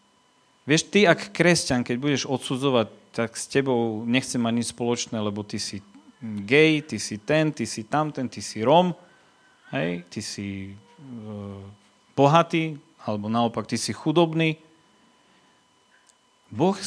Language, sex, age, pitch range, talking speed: Slovak, male, 40-59, 105-145 Hz, 135 wpm